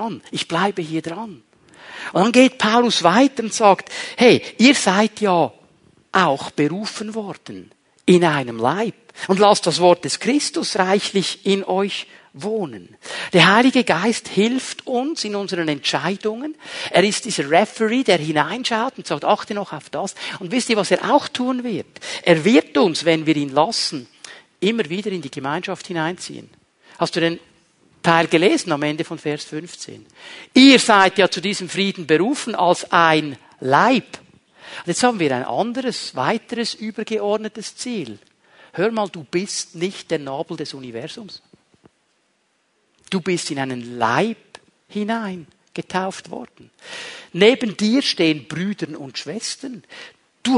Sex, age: male, 50-69